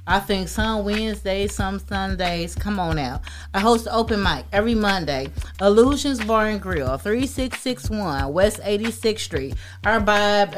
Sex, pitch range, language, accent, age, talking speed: female, 170-215 Hz, English, American, 30-49, 140 wpm